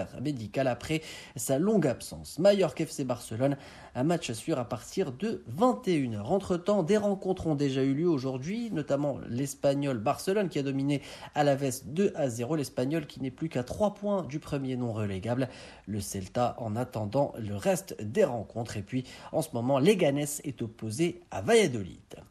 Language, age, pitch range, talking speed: Arabic, 40-59, 125-170 Hz, 175 wpm